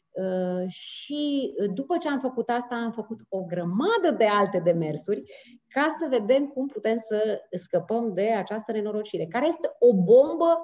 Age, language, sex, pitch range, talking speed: 30-49, Romanian, female, 190-275 Hz, 160 wpm